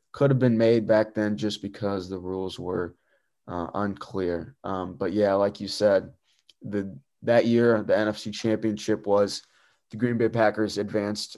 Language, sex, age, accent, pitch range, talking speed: English, male, 20-39, American, 100-120 Hz, 165 wpm